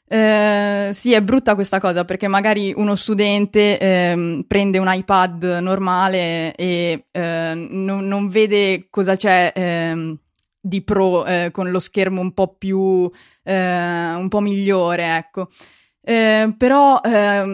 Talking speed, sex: 110 wpm, female